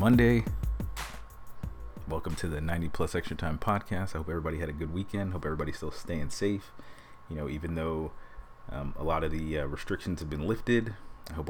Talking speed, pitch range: 195 wpm, 80-90 Hz